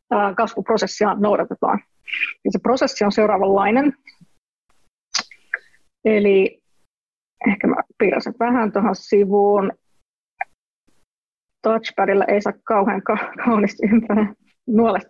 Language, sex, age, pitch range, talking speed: Finnish, female, 30-49, 200-225 Hz, 85 wpm